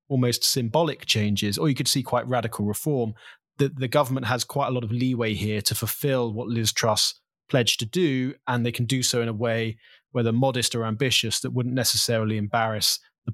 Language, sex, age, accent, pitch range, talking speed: English, male, 20-39, British, 115-135 Hz, 200 wpm